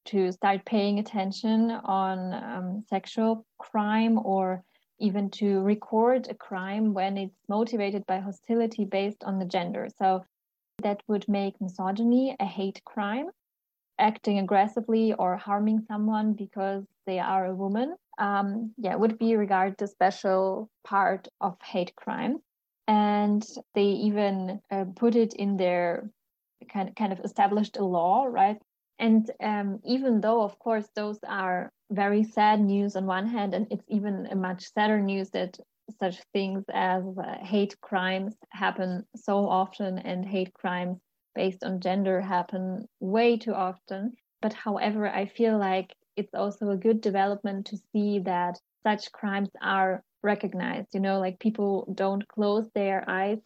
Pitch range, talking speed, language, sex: 190-215 Hz, 150 wpm, English, female